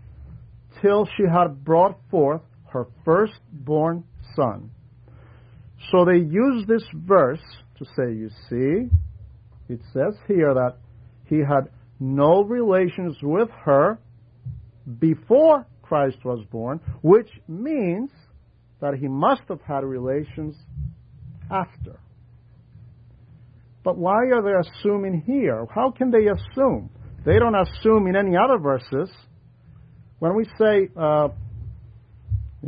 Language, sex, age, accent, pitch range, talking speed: English, male, 50-69, American, 120-180 Hz, 110 wpm